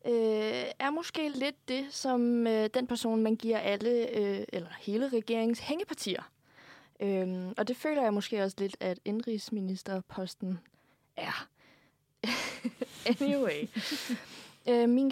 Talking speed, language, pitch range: 125 wpm, Danish, 190-240 Hz